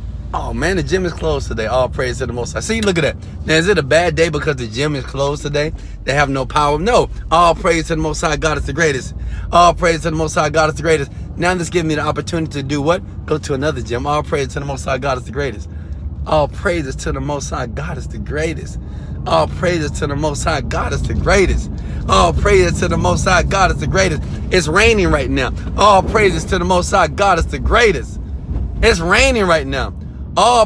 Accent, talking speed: American, 260 wpm